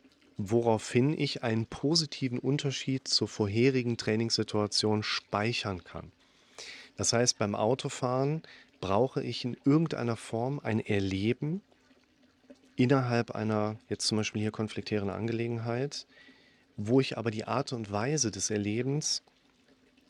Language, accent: German, German